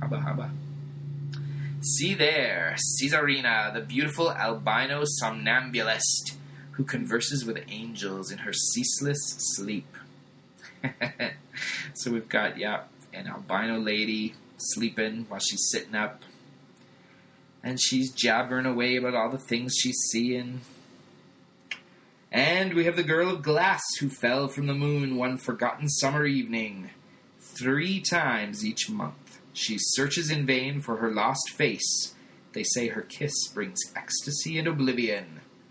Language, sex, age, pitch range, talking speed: English, male, 20-39, 120-145 Hz, 130 wpm